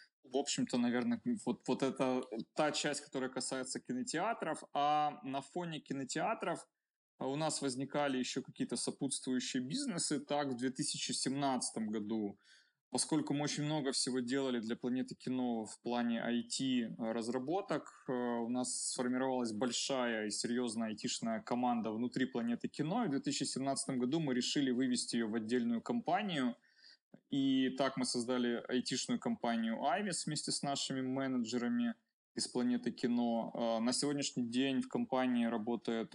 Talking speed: 130 wpm